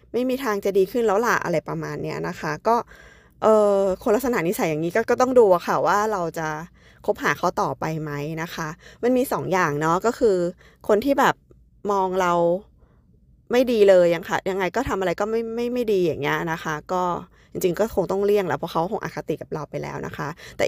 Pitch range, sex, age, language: 170-215 Hz, female, 20-39, Thai